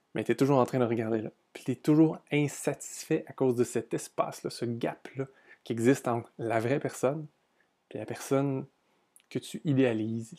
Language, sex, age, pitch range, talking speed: French, male, 20-39, 115-145 Hz, 190 wpm